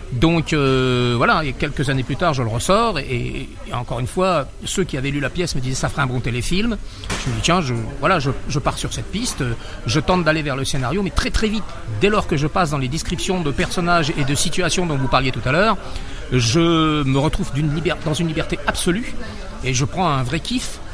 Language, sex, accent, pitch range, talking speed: French, male, French, 135-185 Hz, 245 wpm